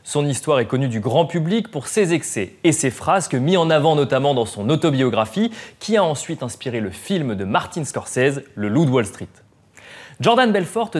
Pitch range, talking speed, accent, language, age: 115-180 Hz, 200 wpm, French, French, 30-49